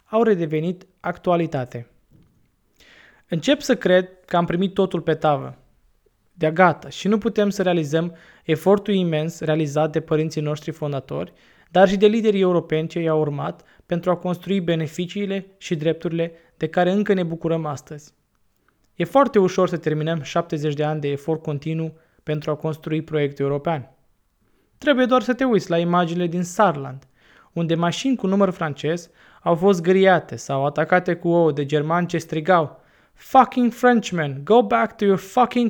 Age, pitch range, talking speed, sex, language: 20-39, 155-195 Hz, 160 wpm, male, Romanian